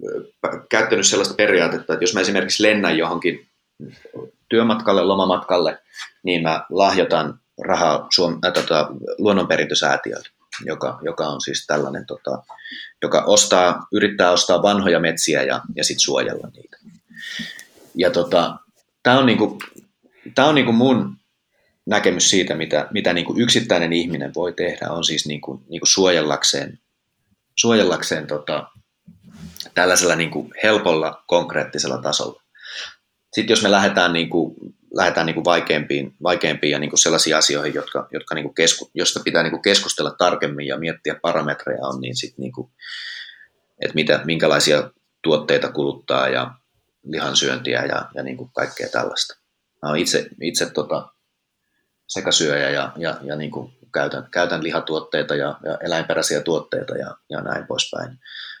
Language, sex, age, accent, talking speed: Finnish, male, 30-49, native, 130 wpm